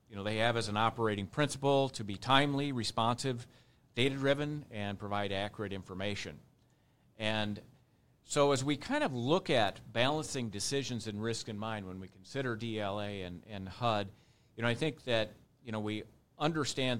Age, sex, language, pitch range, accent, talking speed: 50-69, male, English, 100-125 Hz, American, 165 wpm